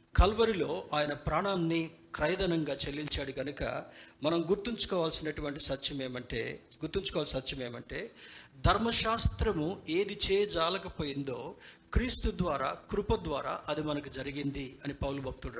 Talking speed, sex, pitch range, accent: 100 wpm, male, 140-175 Hz, native